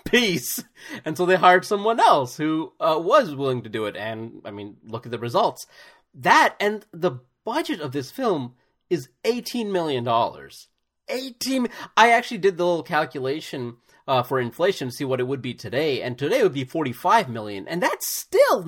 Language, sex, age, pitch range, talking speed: English, male, 30-49, 115-185 Hz, 185 wpm